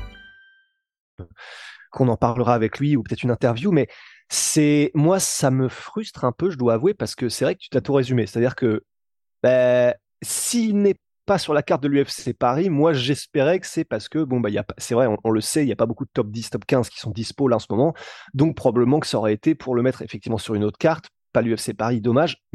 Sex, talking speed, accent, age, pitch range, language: male, 245 wpm, French, 20-39, 120-155 Hz, French